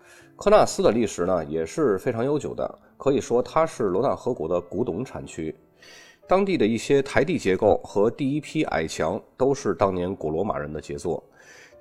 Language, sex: Chinese, male